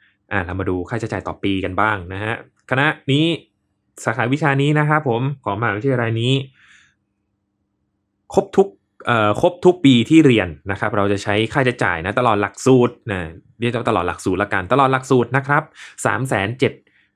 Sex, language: male, Thai